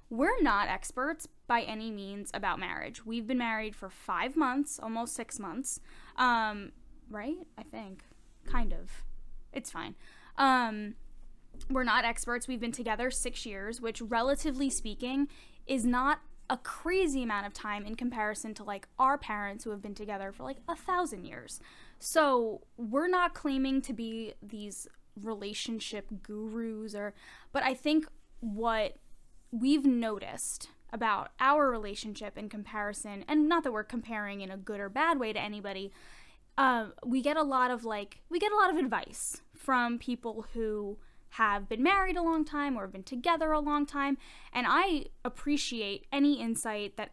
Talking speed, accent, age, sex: 165 wpm, American, 10-29, female